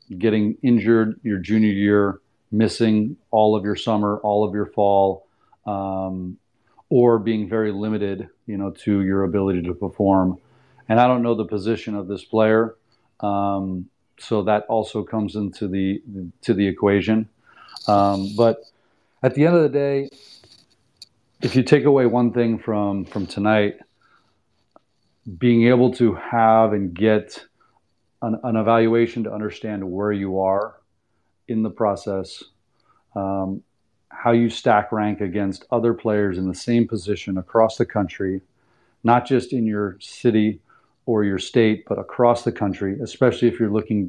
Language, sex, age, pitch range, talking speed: English, male, 40-59, 100-115 Hz, 150 wpm